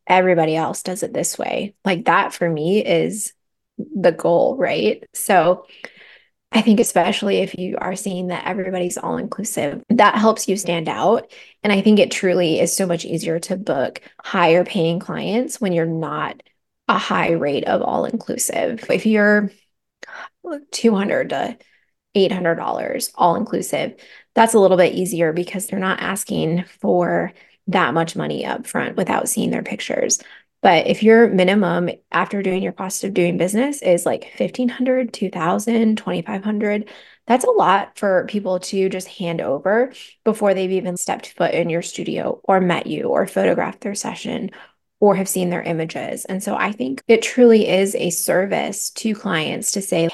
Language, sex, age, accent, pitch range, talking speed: English, female, 20-39, American, 175-220 Hz, 160 wpm